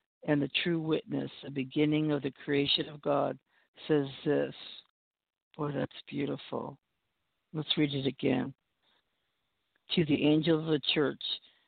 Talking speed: 135 wpm